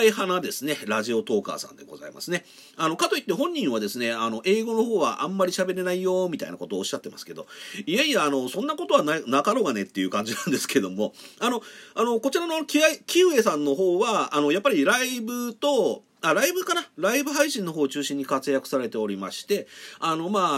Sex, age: male, 40-59